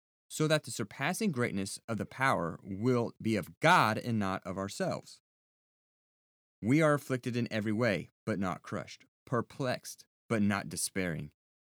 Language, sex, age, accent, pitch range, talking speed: English, male, 30-49, American, 90-125 Hz, 150 wpm